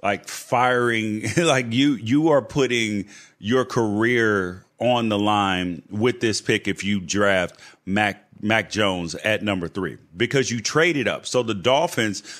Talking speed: 150 wpm